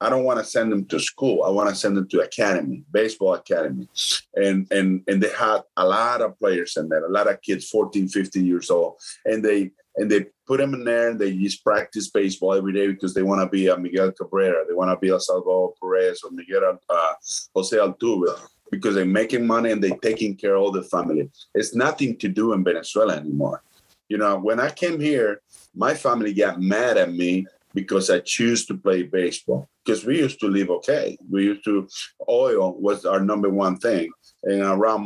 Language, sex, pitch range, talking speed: English, male, 95-130 Hz, 215 wpm